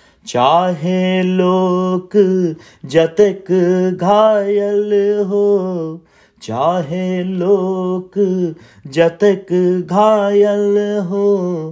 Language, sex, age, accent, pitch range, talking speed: Hindi, male, 30-49, native, 160-205 Hz, 50 wpm